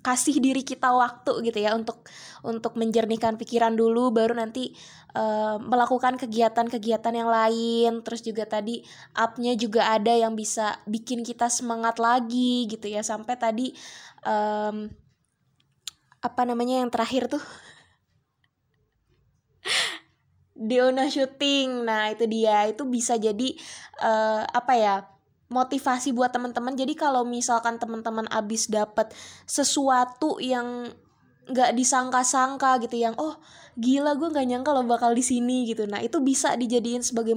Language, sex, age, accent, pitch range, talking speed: Indonesian, female, 20-39, native, 225-255 Hz, 130 wpm